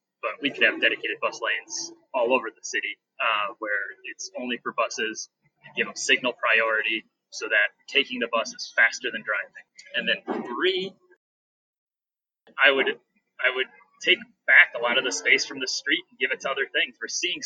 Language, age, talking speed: English, 20-39, 195 wpm